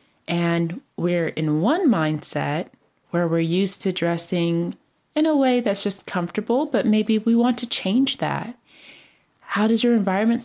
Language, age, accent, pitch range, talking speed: English, 30-49, American, 175-235 Hz, 155 wpm